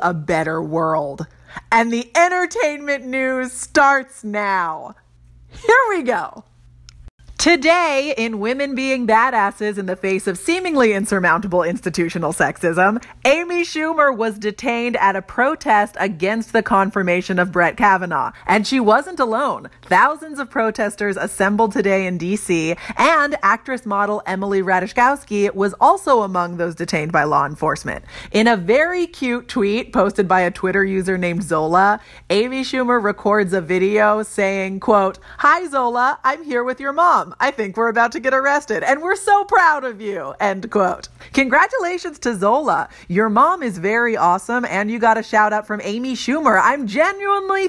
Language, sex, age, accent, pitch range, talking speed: English, female, 30-49, American, 190-265 Hz, 150 wpm